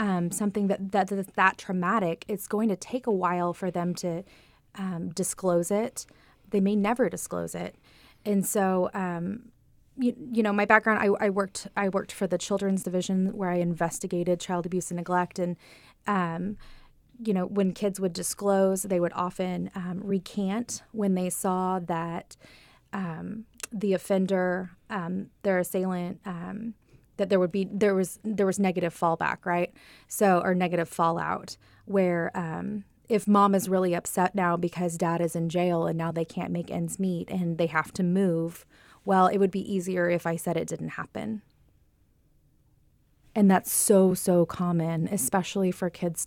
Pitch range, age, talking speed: 175-200 Hz, 20-39, 170 wpm